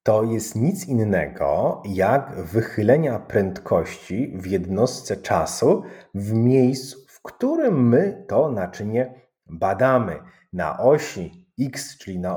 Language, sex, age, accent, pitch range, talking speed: Polish, male, 30-49, native, 90-135 Hz, 110 wpm